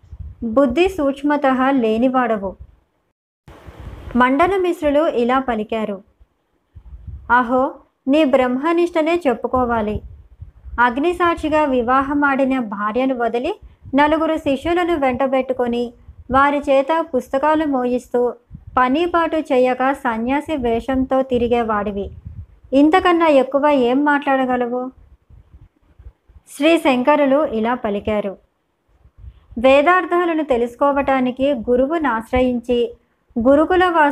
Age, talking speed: 20-39, 65 wpm